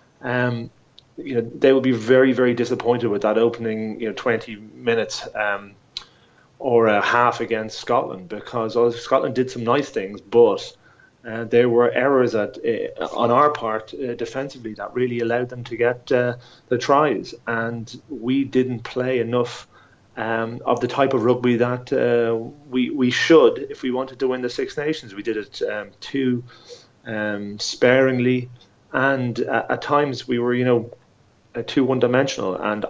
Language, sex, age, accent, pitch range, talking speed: English, male, 30-49, British, 110-130 Hz, 170 wpm